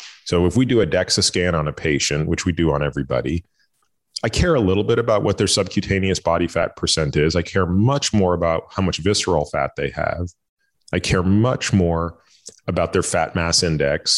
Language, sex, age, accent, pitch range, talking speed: English, male, 30-49, American, 85-105 Hz, 205 wpm